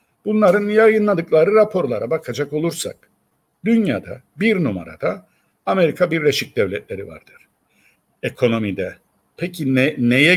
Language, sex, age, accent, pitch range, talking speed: Turkish, male, 60-79, native, 125-210 Hz, 95 wpm